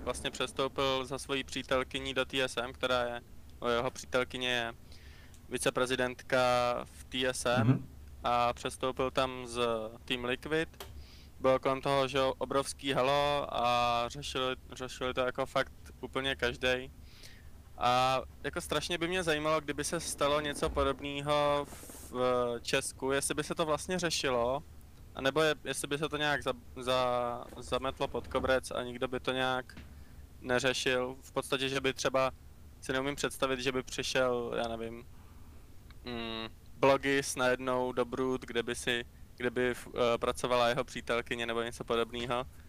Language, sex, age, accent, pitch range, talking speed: Czech, male, 20-39, native, 120-140 Hz, 145 wpm